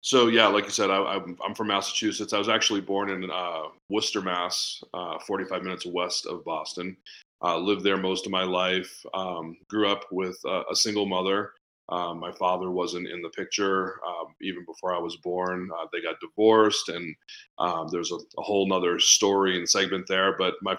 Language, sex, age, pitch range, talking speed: English, male, 30-49, 90-100 Hz, 195 wpm